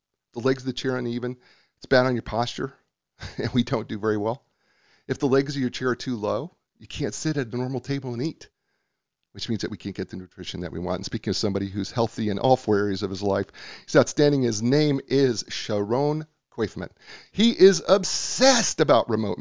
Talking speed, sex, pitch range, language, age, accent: 225 wpm, male, 105-135 Hz, English, 40-59, American